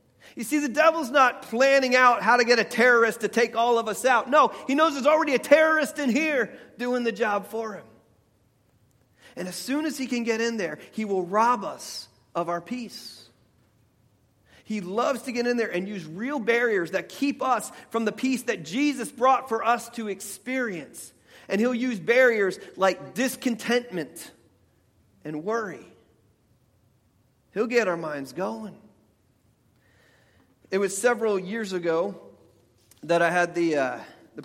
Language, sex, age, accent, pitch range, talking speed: English, male, 40-59, American, 150-235 Hz, 165 wpm